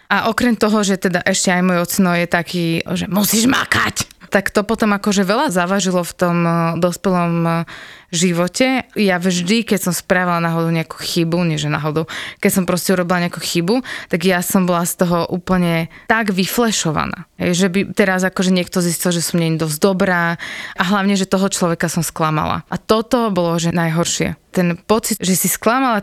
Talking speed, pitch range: 180 wpm, 175-205 Hz